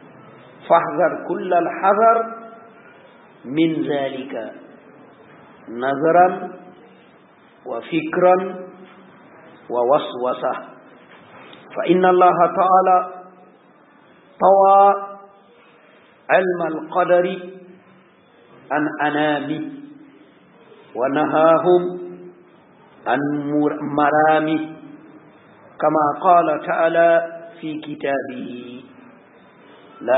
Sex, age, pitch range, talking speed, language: male, 50-69, 155-200 Hz, 50 wpm, French